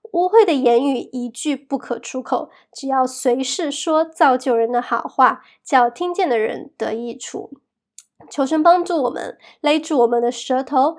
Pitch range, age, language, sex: 240-300 Hz, 20-39, Chinese, female